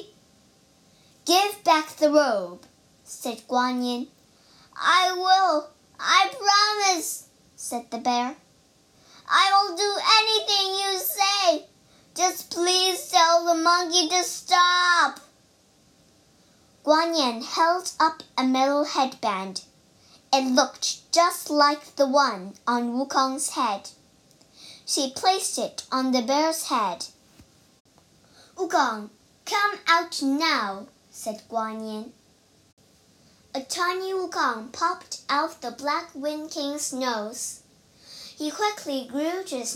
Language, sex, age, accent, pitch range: Chinese, male, 10-29, American, 250-350 Hz